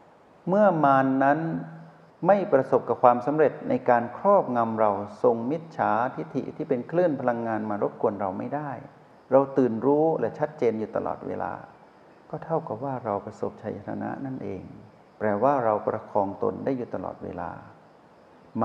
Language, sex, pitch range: Thai, male, 105-135 Hz